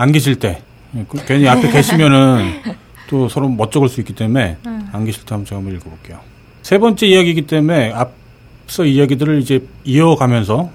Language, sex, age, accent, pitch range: Korean, male, 40-59, native, 115-150 Hz